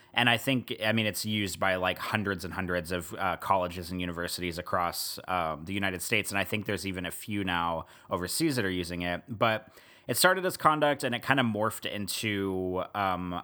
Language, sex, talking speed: English, male, 210 wpm